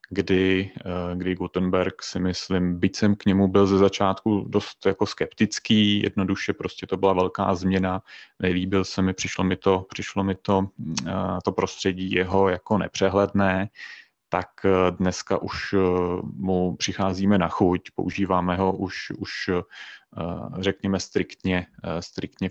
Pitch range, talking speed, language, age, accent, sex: 90-95 Hz, 125 wpm, Czech, 30-49, native, male